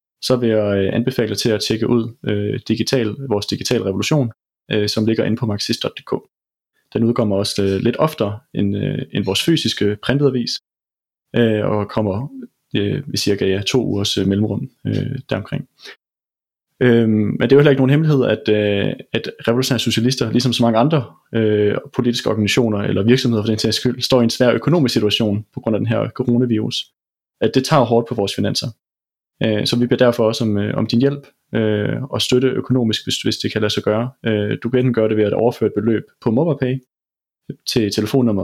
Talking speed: 190 wpm